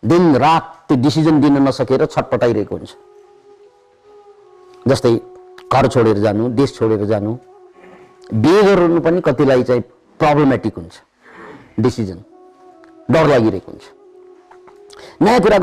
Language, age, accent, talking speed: English, 50-69, Indian, 55 wpm